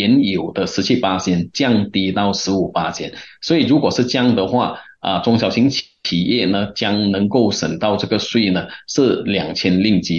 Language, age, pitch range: Chinese, 30-49, 95-120 Hz